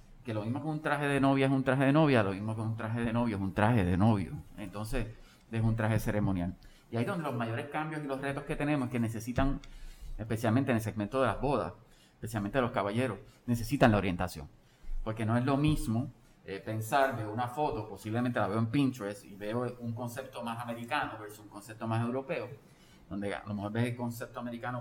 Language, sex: Spanish, male